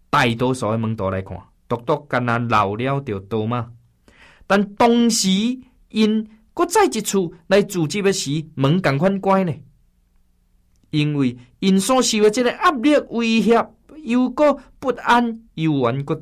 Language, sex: Chinese, male